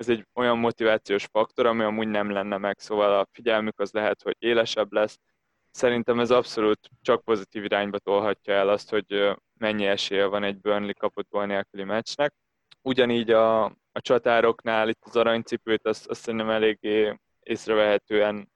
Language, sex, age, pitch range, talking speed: Hungarian, male, 20-39, 105-115 Hz, 155 wpm